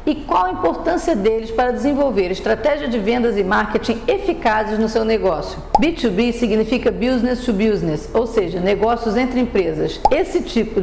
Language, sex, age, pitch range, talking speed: Portuguese, female, 50-69, 220-260 Hz, 155 wpm